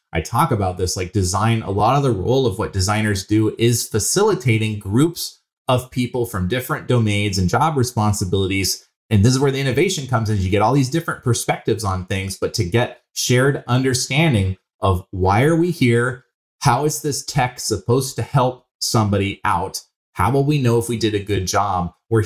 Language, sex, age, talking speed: English, male, 30-49, 195 wpm